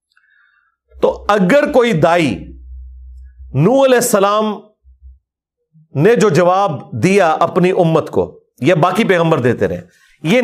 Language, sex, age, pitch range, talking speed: Urdu, male, 40-59, 130-205 Hz, 120 wpm